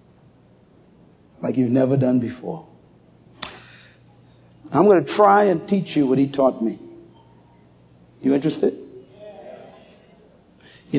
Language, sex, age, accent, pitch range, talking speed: English, male, 60-79, American, 125-180 Hz, 105 wpm